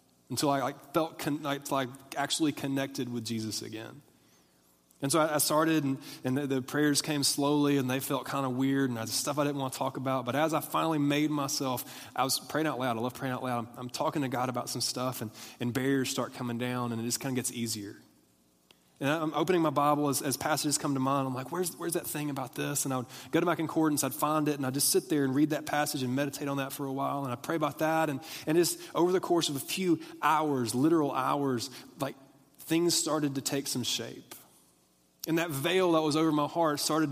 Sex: male